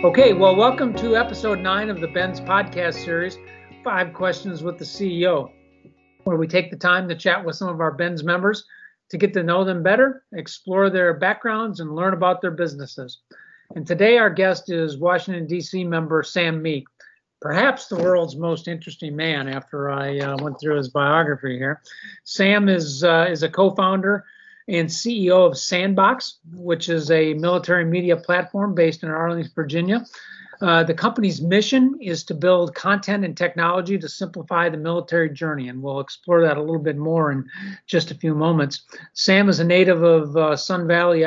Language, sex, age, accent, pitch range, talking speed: English, male, 50-69, American, 160-190 Hz, 180 wpm